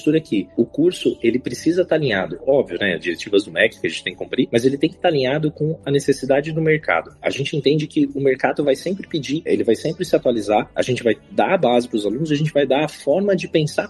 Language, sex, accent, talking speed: Portuguese, male, Brazilian, 260 wpm